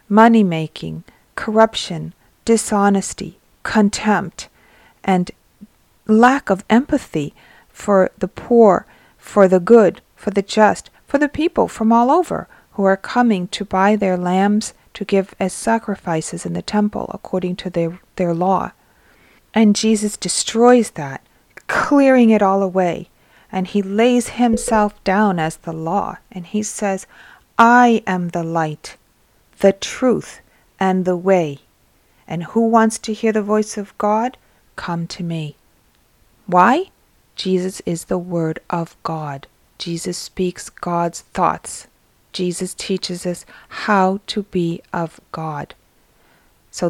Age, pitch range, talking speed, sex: 40-59, 175-215 Hz, 130 wpm, female